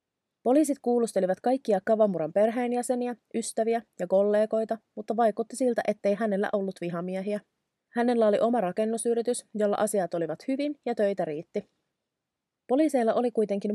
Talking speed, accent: 125 wpm, native